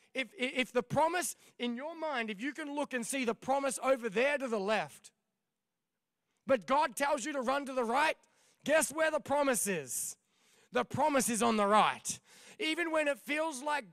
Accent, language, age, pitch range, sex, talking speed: Australian, English, 20-39, 215-285 Hz, male, 195 wpm